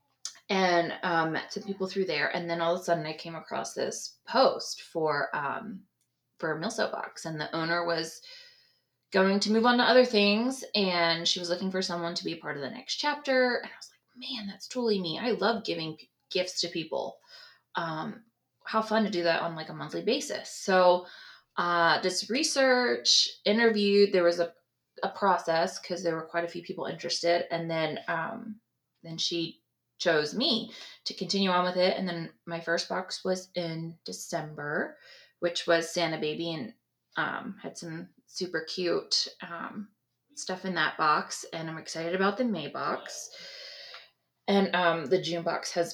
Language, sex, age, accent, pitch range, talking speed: English, female, 20-39, American, 165-205 Hz, 185 wpm